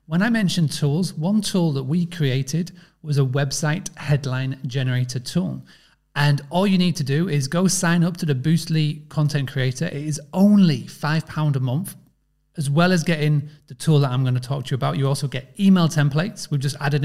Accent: British